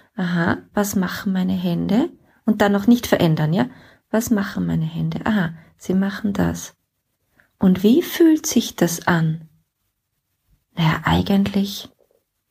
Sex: female